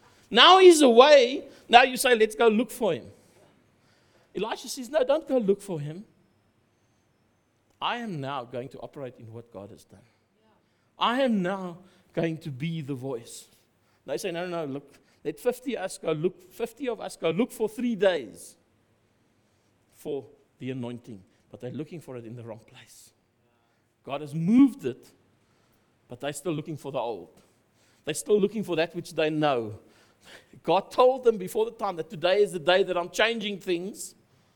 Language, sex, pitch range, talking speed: English, male, 115-180 Hz, 180 wpm